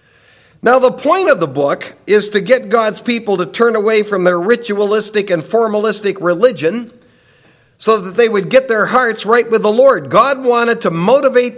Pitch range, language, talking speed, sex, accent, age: 170-230 Hz, English, 180 wpm, male, American, 50-69